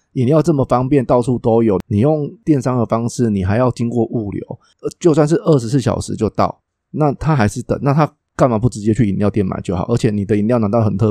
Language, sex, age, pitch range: Chinese, male, 20-39, 100-125 Hz